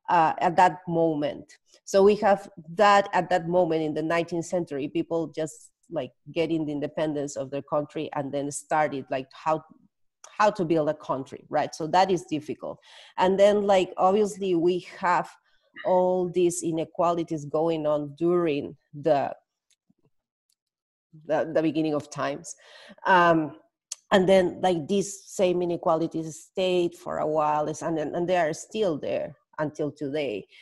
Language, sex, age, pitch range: English, female, 30-49, 150-185 Hz